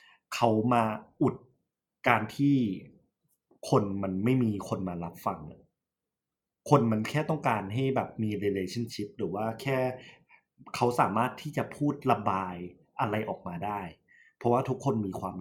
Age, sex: 20-39, male